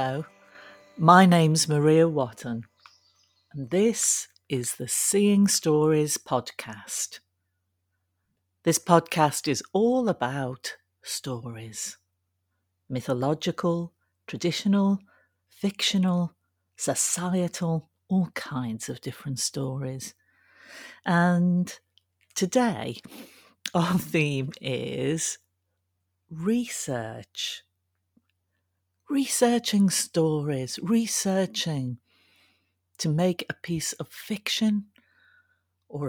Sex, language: female, English